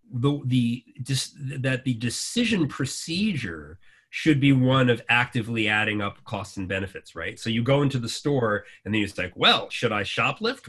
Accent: American